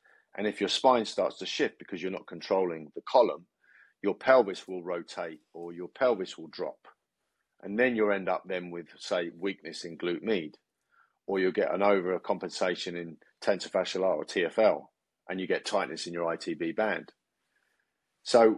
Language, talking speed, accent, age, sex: English, 170 wpm, British, 40-59, male